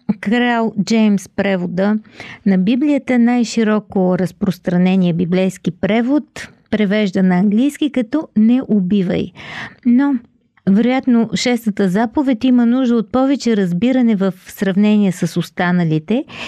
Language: Bulgarian